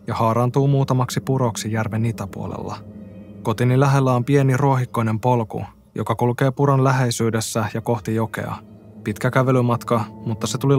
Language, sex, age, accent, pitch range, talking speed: Finnish, male, 20-39, native, 110-130 Hz, 130 wpm